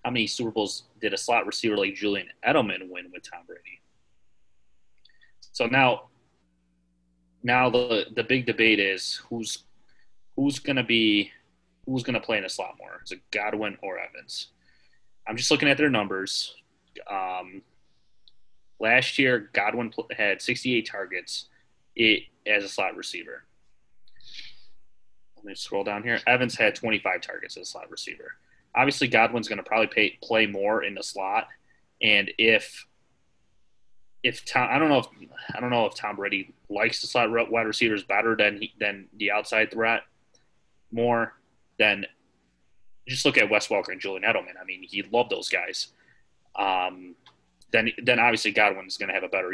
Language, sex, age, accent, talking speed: English, male, 30-49, American, 160 wpm